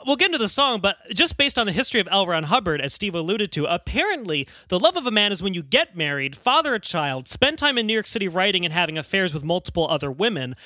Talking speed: 265 wpm